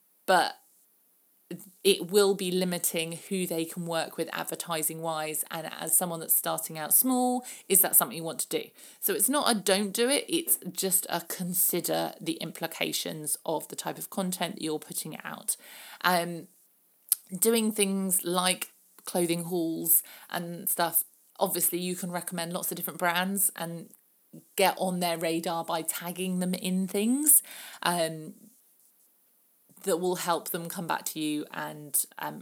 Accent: British